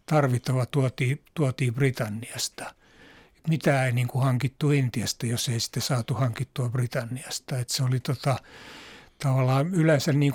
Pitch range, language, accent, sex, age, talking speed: 130-150 Hz, Finnish, native, male, 60-79, 135 wpm